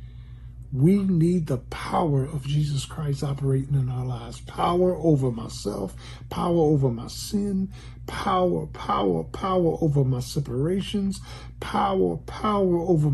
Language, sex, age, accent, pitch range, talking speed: English, male, 50-69, American, 115-185 Hz, 125 wpm